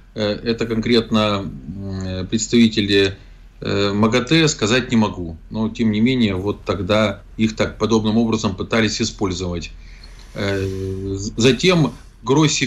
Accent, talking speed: native, 100 wpm